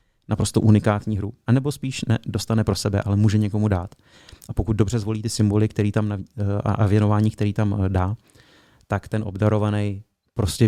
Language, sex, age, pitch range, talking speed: Czech, male, 30-49, 105-125 Hz, 170 wpm